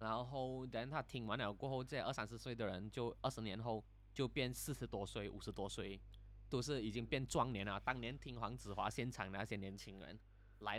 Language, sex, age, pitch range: Chinese, male, 20-39, 100-125 Hz